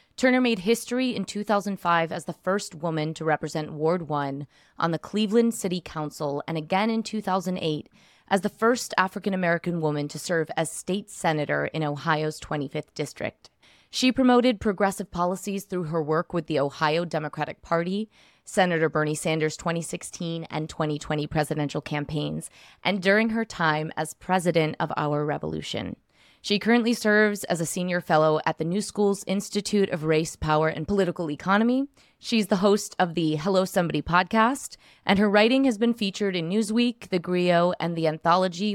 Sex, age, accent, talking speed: female, 20-39, American, 165 wpm